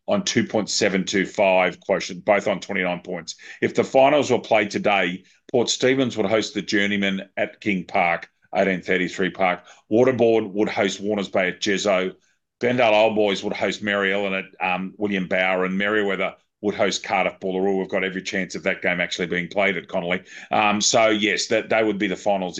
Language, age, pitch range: English, 40-59, 95-115 Hz